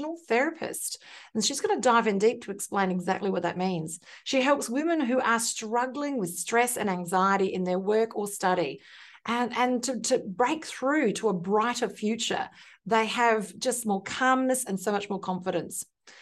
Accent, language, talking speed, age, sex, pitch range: Australian, English, 180 wpm, 40-59, female, 205-250 Hz